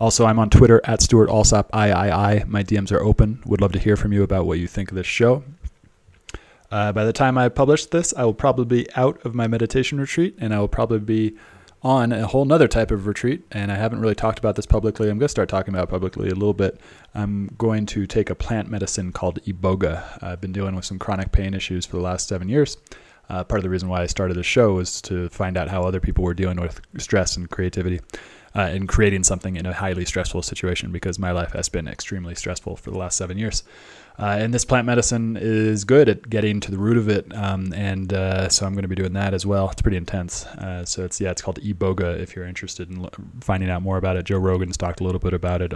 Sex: male